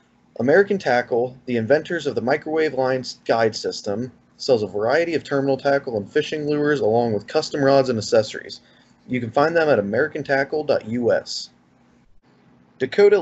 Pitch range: 110-145 Hz